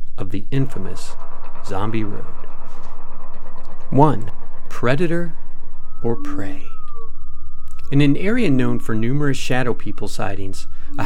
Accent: American